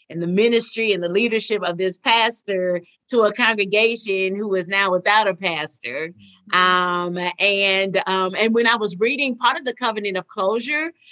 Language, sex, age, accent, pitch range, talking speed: English, female, 30-49, American, 185-240 Hz, 175 wpm